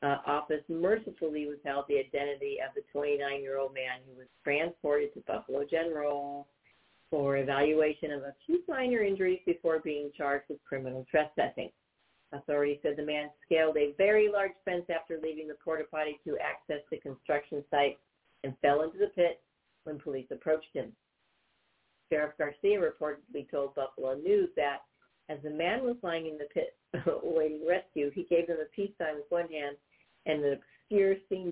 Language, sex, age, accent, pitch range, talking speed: English, female, 50-69, American, 150-205 Hz, 160 wpm